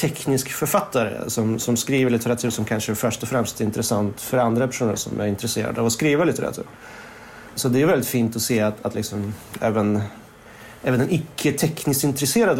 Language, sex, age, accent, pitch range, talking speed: Swedish, male, 30-49, native, 115-150 Hz, 180 wpm